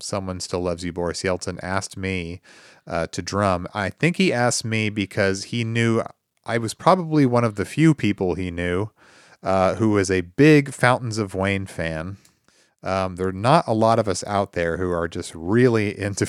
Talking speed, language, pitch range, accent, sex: 195 wpm, English, 90-120 Hz, American, male